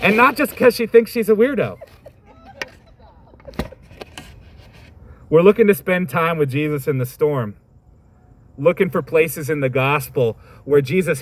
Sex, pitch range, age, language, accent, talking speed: male, 130-180 Hz, 30-49, English, American, 145 wpm